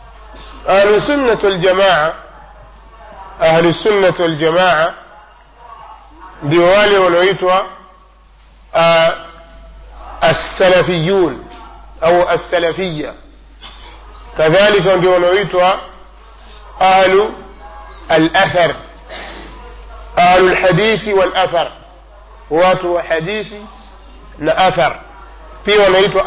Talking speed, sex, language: 60 wpm, male, Swahili